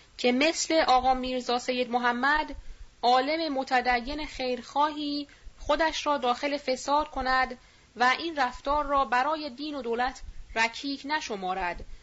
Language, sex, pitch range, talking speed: Persian, female, 205-285 Hz, 120 wpm